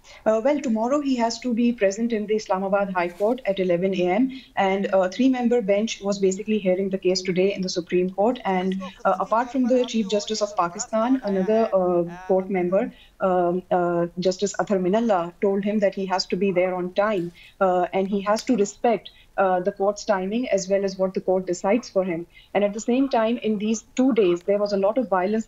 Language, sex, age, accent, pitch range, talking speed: English, female, 30-49, Indian, 185-220 Hz, 215 wpm